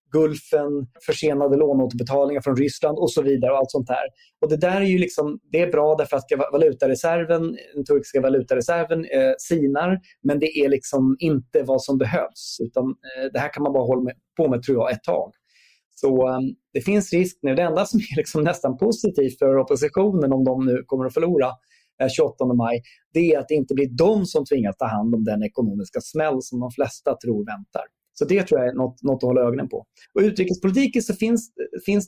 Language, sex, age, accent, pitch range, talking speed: Swedish, male, 30-49, native, 135-185 Hz, 210 wpm